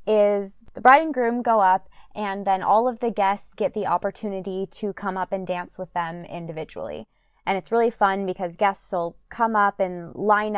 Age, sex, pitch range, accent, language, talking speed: 20-39, female, 175-215 Hz, American, English, 200 wpm